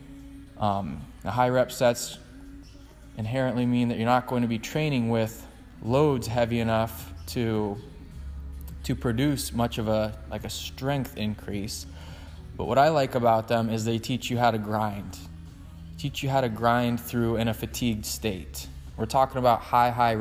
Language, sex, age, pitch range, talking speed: English, male, 20-39, 105-130 Hz, 165 wpm